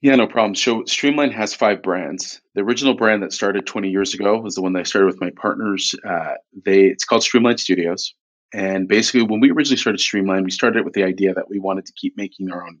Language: English